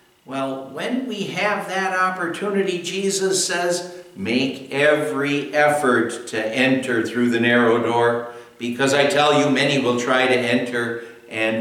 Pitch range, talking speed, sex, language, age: 115-145 Hz, 140 wpm, male, English, 60-79